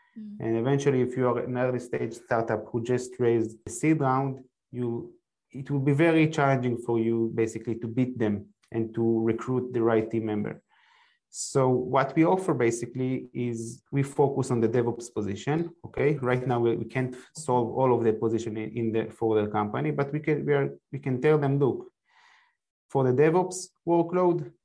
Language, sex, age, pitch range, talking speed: English, male, 30-49, 115-140 Hz, 185 wpm